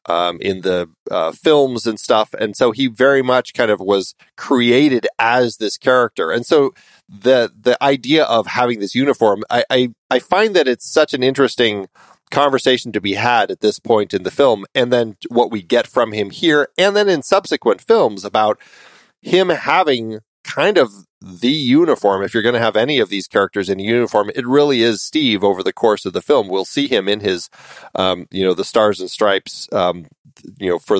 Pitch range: 105-145 Hz